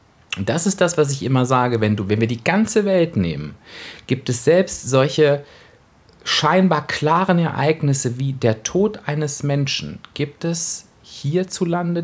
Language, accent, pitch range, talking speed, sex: German, German, 105-150 Hz, 155 wpm, male